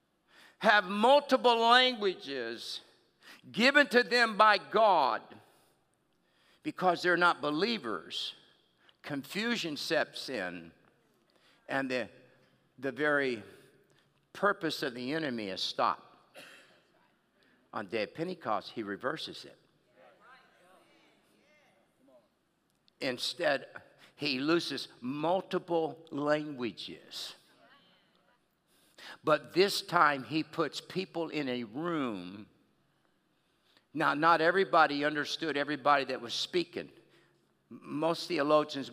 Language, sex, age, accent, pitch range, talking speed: English, male, 60-79, American, 135-180 Hz, 90 wpm